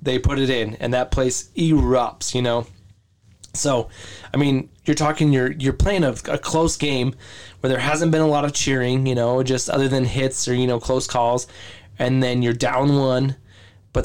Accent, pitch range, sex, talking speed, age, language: American, 115-150 Hz, male, 200 wpm, 20-39, English